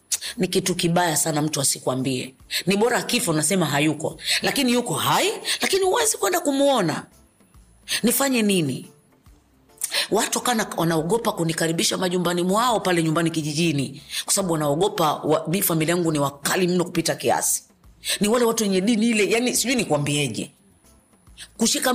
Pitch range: 155-220 Hz